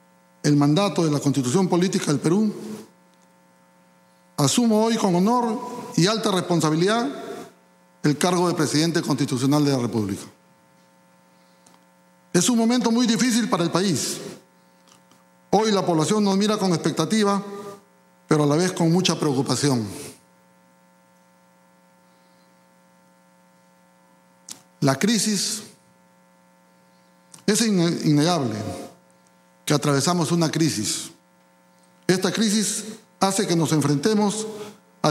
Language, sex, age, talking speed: Spanish, male, 60-79, 105 wpm